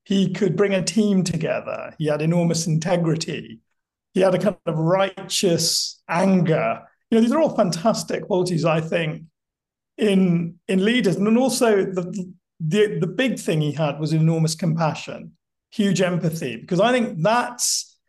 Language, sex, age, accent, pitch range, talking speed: English, male, 50-69, British, 170-210 Hz, 155 wpm